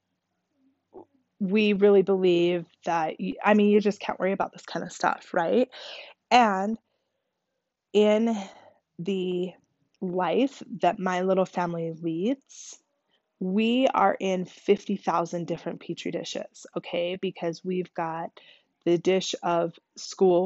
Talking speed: 115 wpm